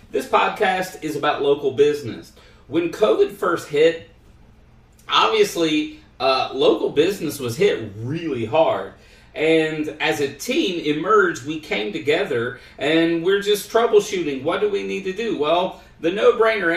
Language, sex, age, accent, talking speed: English, male, 40-59, American, 140 wpm